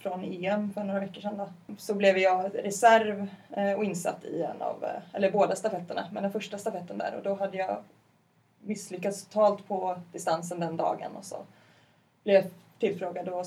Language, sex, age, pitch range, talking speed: Swedish, female, 20-39, 180-205 Hz, 180 wpm